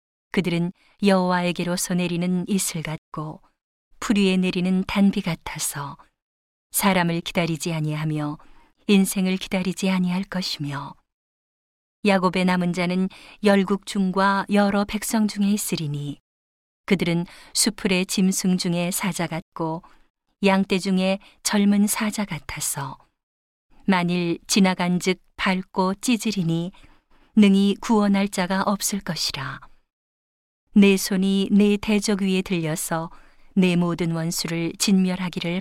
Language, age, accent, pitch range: Korean, 40-59, native, 175-200 Hz